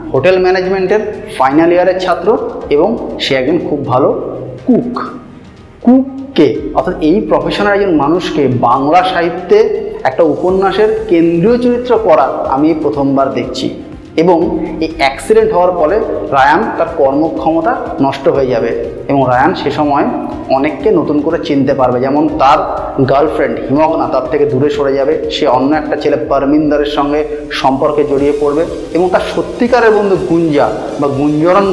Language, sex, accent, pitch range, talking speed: Bengali, male, native, 145-215 Hz, 110 wpm